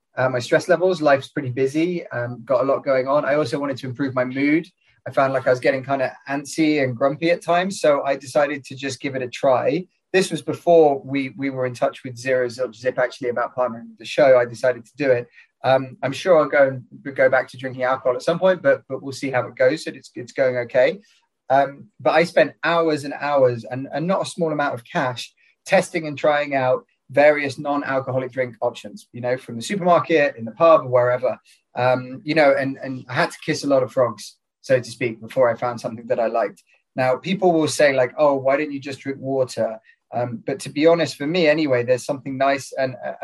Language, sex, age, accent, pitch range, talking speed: English, male, 20-39, British, 125-150 Hz, 240 wpm